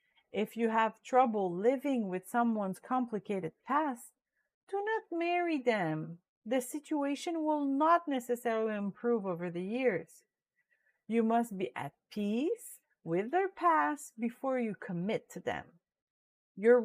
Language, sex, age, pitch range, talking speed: English, female, 50-69, 205-310 Hz, 130 wpm